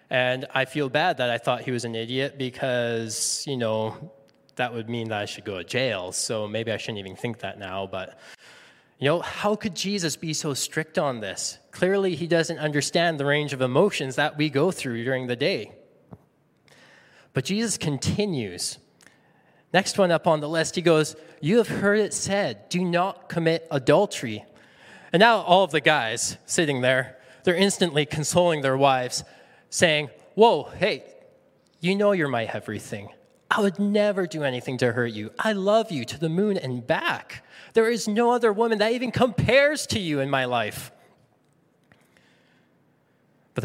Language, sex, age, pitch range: English, male, 20-39, 125-180 Hz